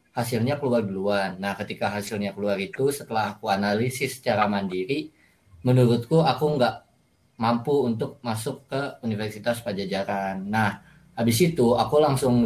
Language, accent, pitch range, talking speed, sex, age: Indonesian, native, 105-130 Hz, 130 wpm, male, 20-39